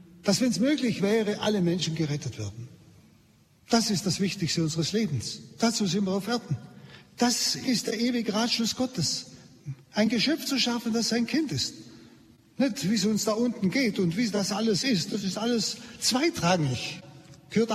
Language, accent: German, German